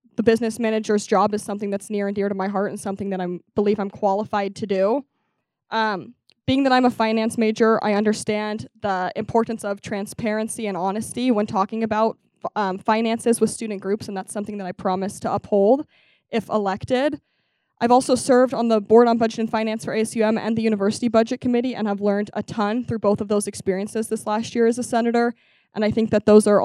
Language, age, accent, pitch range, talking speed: English, 20-39, American, 200-230 Hz, 210 wpm